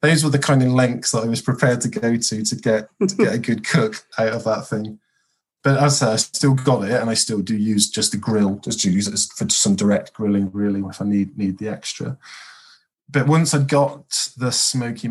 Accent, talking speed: British, 240 wpm